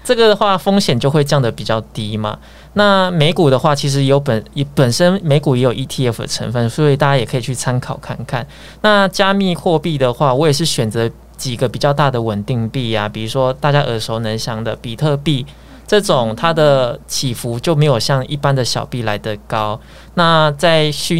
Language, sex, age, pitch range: Chinese, male, 20-39, 120-155 Hz